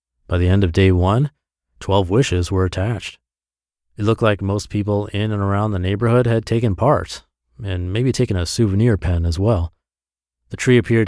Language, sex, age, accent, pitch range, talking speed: English, male, 30-49, American, 85-115 Hz, 185 wpm